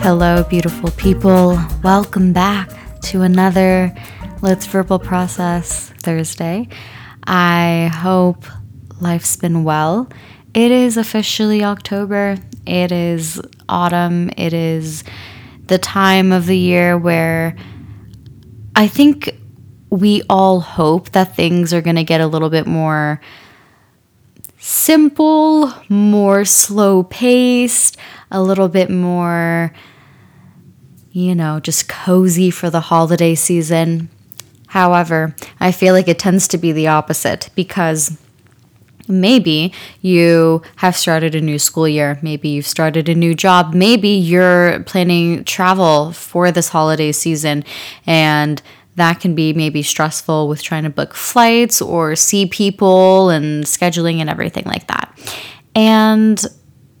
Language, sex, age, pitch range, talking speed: English, female, 20-39, 160-190 Hz, 120 wpm